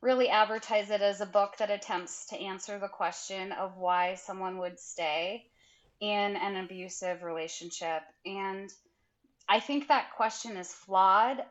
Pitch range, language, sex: 180-220 Hz, English, female